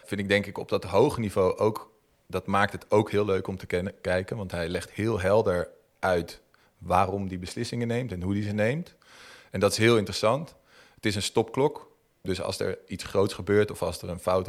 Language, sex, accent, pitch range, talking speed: Dutch, male, Dutch, 95-115 Hz, 225 wpm